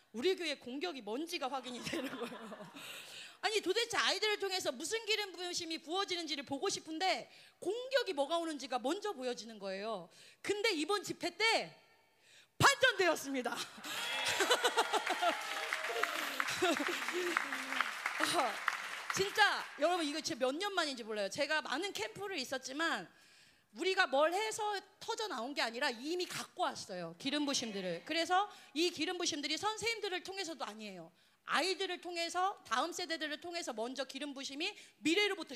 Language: Korean